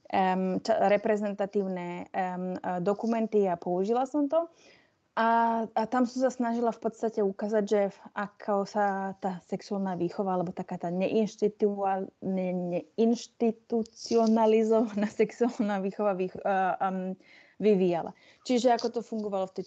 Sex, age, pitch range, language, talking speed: female, 20-39, 185-220 Hz, Slovak, 125 wpm